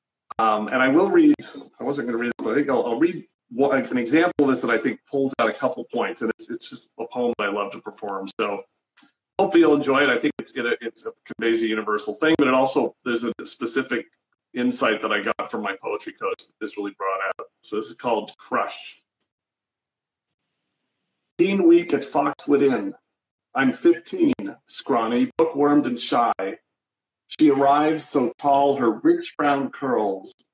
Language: English